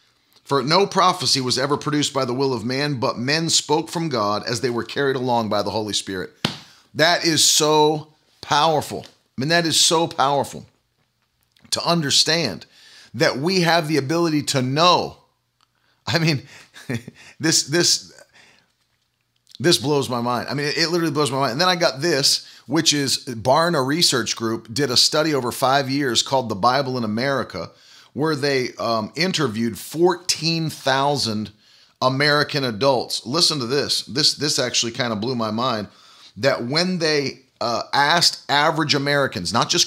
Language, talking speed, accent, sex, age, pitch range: English, 160 wpm, American, male, 40-59, 120-160 Hz